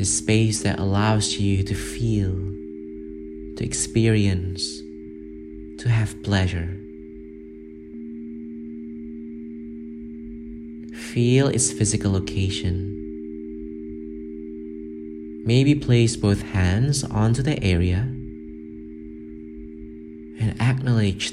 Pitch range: 80-105 Hz